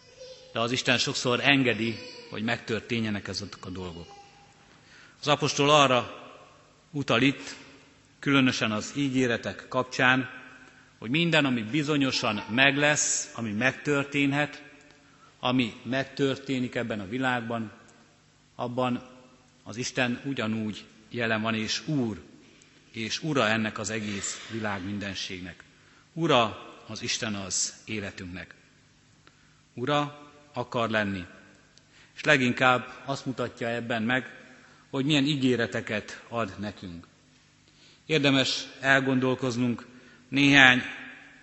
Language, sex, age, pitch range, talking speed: Hungarian, male, 50-69, 115-140 Hz, 100 wpm